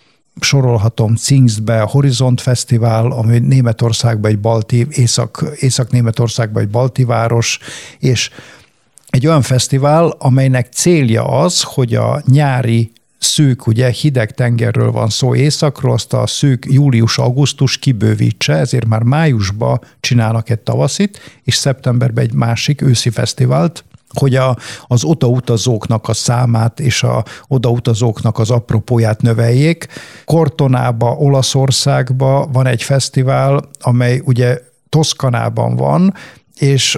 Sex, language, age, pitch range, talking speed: male, Hungarian, 50-69, 120-140 Hz, 110 wpm